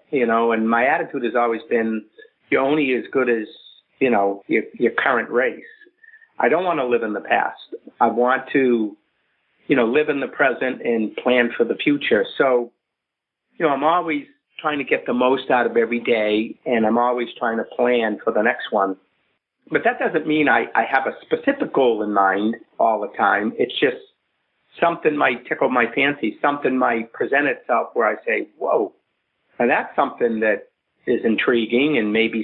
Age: 50-69